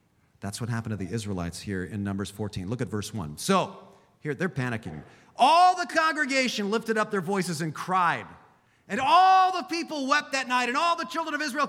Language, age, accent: English, 40-59, American